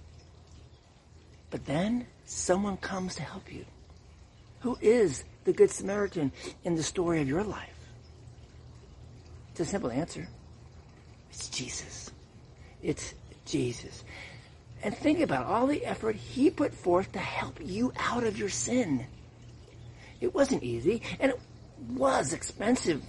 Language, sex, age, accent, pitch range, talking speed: English, male, 50-69, American, 115-170 Hz, 125 wpm